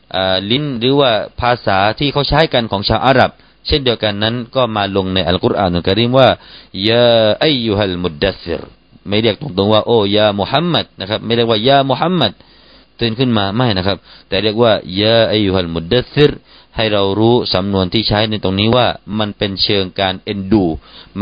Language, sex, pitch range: Thai, male, 95-125 Hz